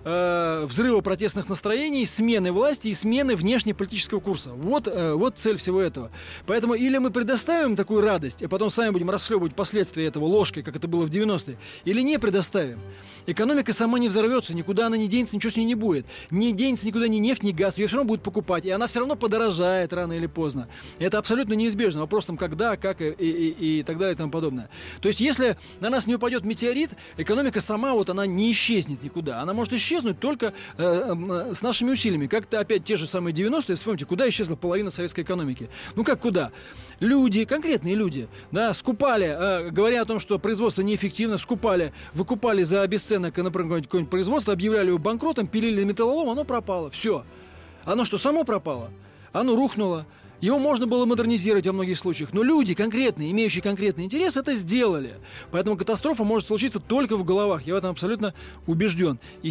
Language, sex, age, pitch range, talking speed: Russian, male, 20-39, 175-230 Hz, 190 wpm